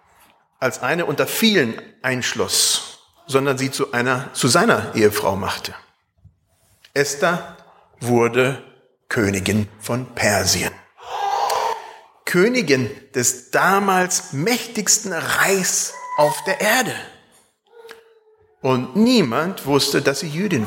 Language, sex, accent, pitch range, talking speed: German, male, German, 125-195 Hz, 95 wpm